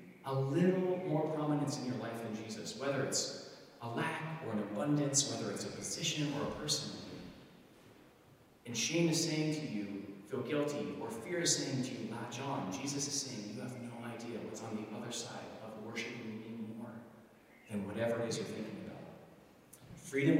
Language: English